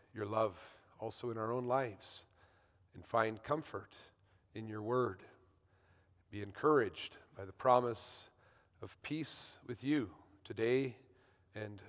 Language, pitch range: English, 105-130 Hz